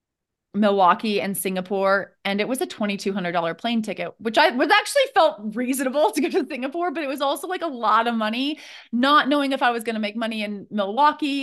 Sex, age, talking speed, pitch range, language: female, 20-39, 210 wpm, 190-240 Hz, English